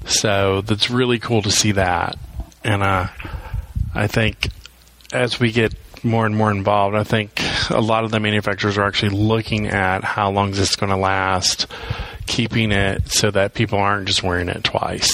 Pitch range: 95-110 Hz